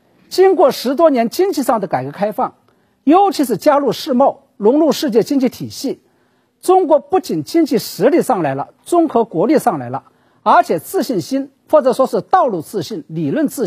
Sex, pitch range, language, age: male, 210-315 Hz, Chinese, 50-69